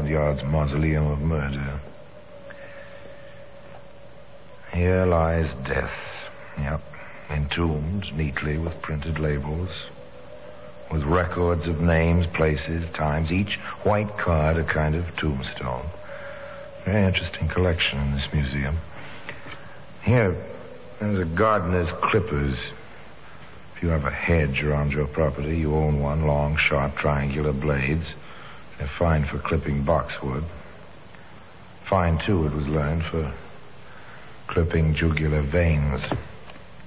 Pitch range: 75-85 Hz